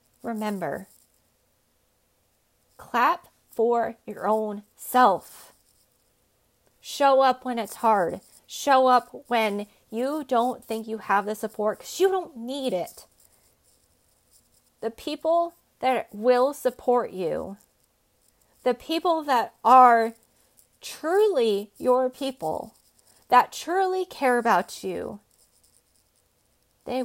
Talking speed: 100 wpm